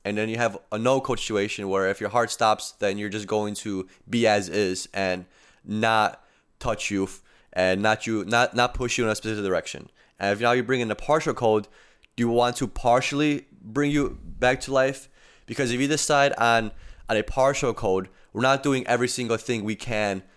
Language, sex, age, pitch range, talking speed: English, male, 20-39, 100-120 Hz, 210 wpm